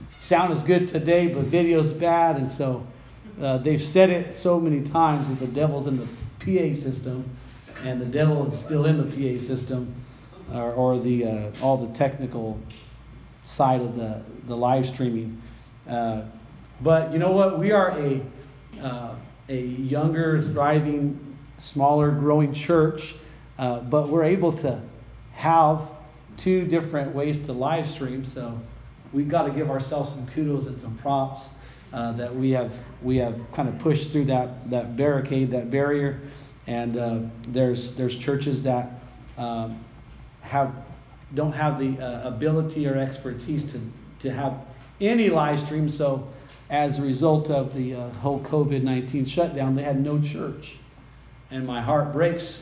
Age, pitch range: 40-59, 125-150 Hz